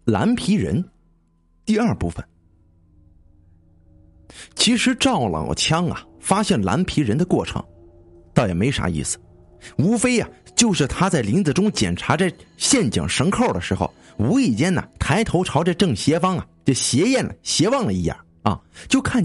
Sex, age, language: male, 50-69, Chinese